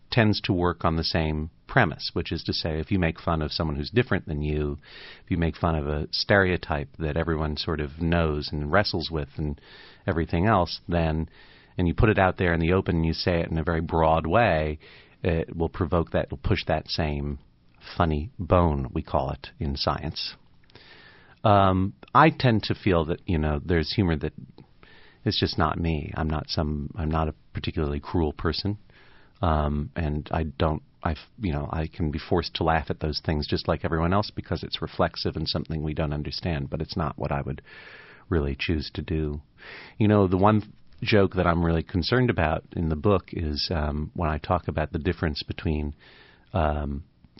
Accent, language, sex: American, English, male